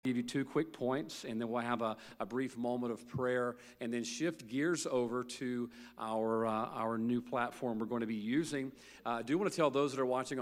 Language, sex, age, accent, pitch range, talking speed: English, male, 40-59, American, 115-130 Hz, 235 wpm